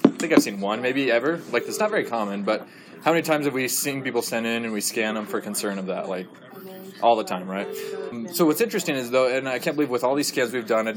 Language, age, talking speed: English, 20-39, 280 wpm